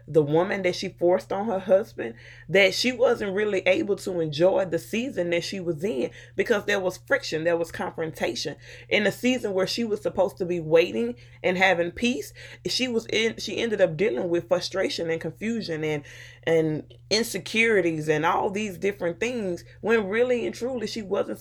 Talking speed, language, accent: 185 wpm, English, American